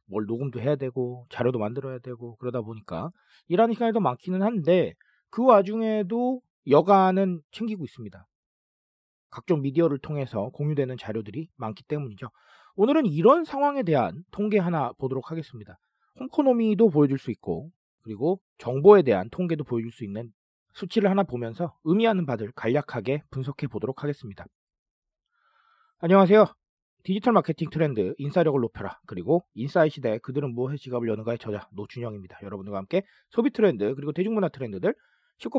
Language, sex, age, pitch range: Korean, male, 40-59, 120-200 Hz